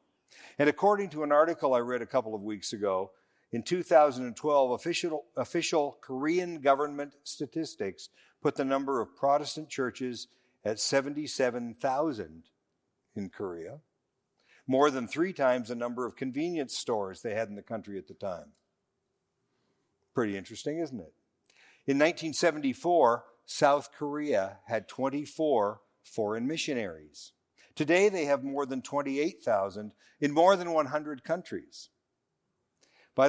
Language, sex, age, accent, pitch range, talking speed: English, male, 50-69, American, 115-145 Hz, 125 wpm